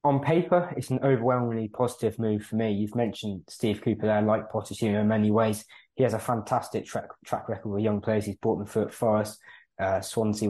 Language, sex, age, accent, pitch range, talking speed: English, male, 20-39, British, 105-115 Hz, 225 wpm